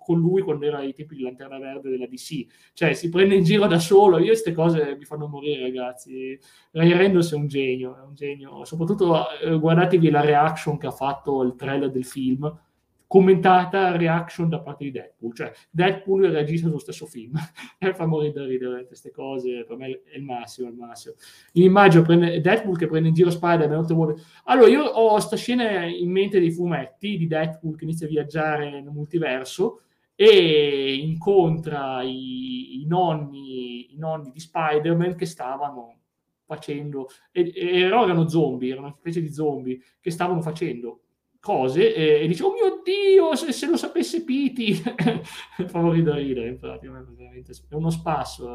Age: 20-39